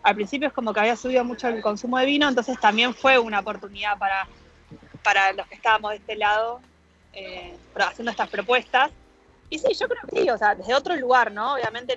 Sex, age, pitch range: female, 20-39, 200-240 Hz